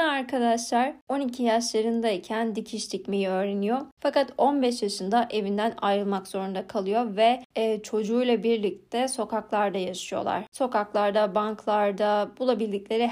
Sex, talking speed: female, 95 wpm